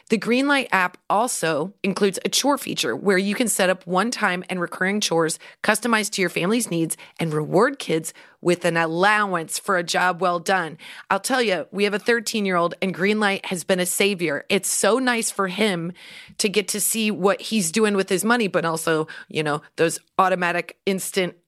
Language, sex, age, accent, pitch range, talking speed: English, female, 30-49, American, 175-220 Hz, 190 wpm